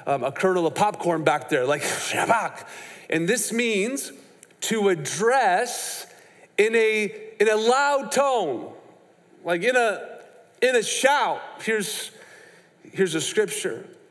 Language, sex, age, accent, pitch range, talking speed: English, male, 40-59, American, 180-235 Hz, 125 wpm